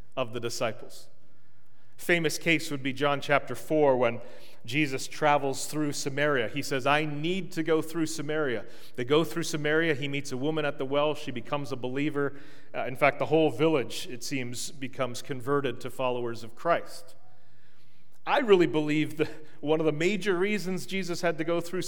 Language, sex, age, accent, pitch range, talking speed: English, male, 40-59, American, 130-155 Hz, 180 wpm